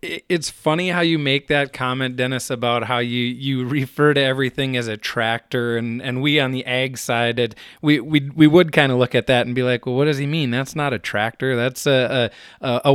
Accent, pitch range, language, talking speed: American, 120-145 Hz, English, 230 wpm